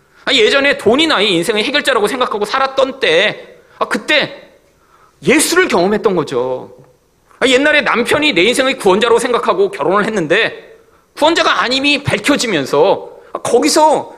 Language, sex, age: Korean, male, 30-49